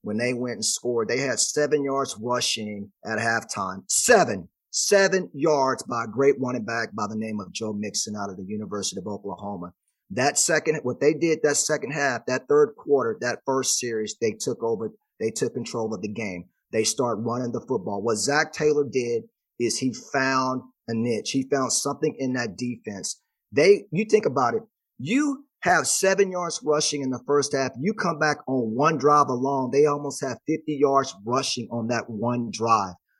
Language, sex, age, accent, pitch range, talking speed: English, male, 30-49, American, 120-150 Hz, 190 wpm